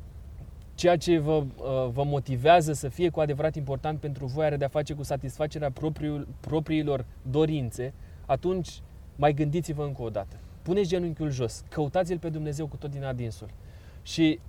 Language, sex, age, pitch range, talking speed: Romanian, male, 20-39, 120-160 Hz, 150 wpm